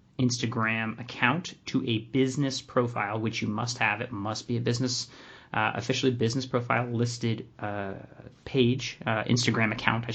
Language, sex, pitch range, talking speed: English, male, 110-130 Hz, 155 wpm